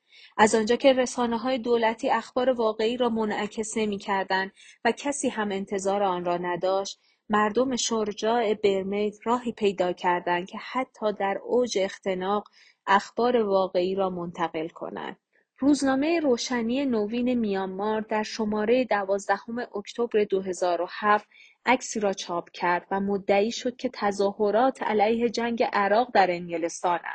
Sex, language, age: female, Persian, 30-49